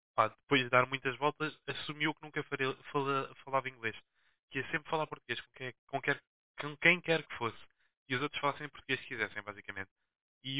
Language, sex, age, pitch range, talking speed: Portuguese, male, 20-39, 110-150 Hz, 185 wpm